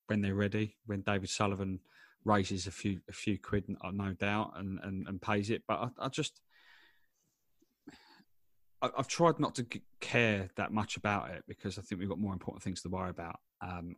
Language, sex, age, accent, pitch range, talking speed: English, male, 20-39, British, 95-110 Hz, 195 wpm